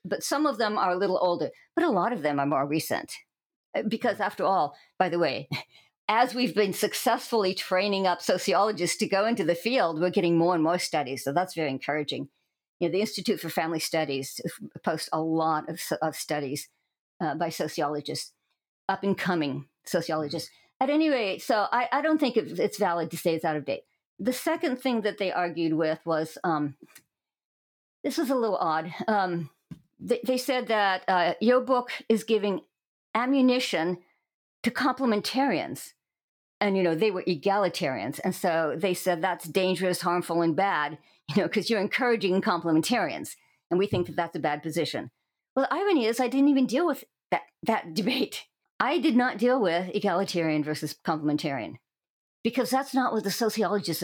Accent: American